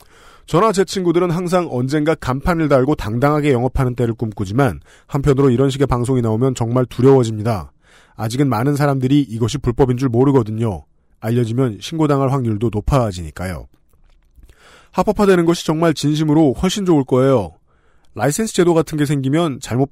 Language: Korean